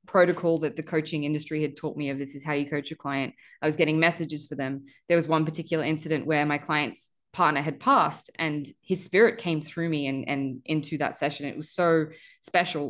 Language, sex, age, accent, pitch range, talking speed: English, female, 20-39, Australian, 145-175 Hz, 225 wpm